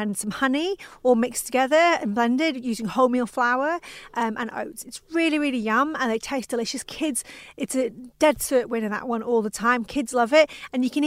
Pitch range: 220-260 Hz